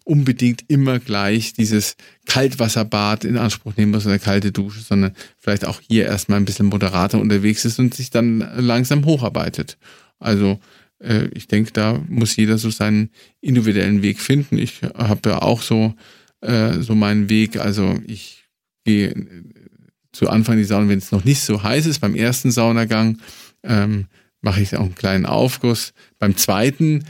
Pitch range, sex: 100-115 Hz, male